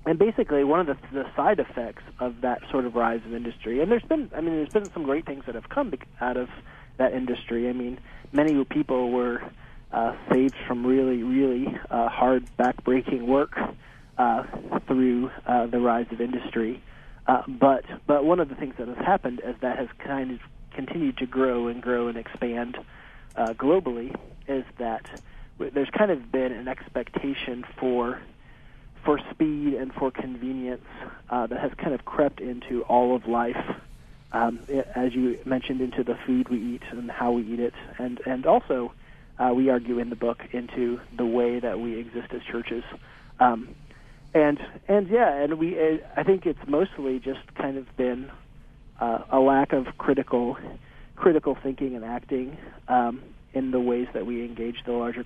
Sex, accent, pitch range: male, American, 120-140 Hz